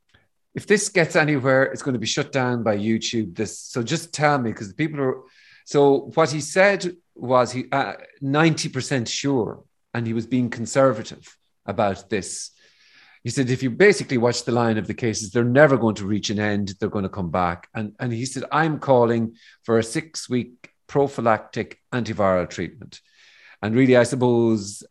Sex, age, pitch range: male, 40-59, 110-155 Hz